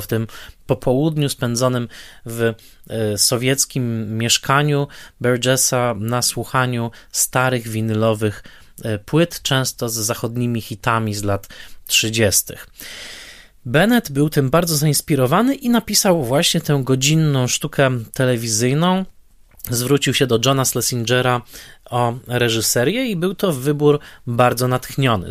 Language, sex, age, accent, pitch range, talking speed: Polish, male, 20-39, native, 115-140 Hz, 105 wpm